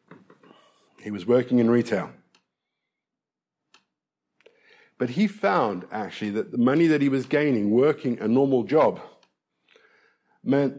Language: English